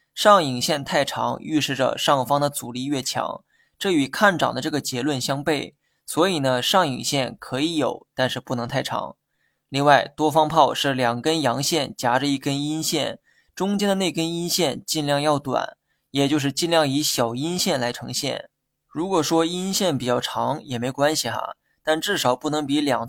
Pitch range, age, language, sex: 130-160 Hz, 20-39, Chinese, male